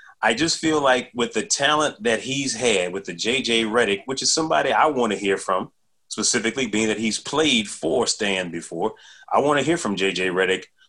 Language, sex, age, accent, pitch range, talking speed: English, male, 30-49, American, 110-135 Hz, 205 wpm